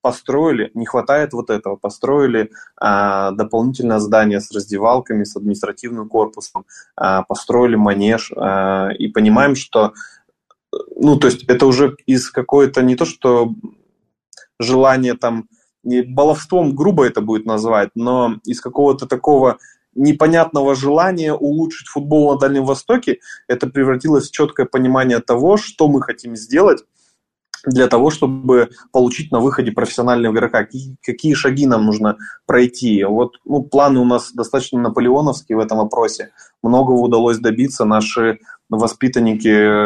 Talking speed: 130 wpm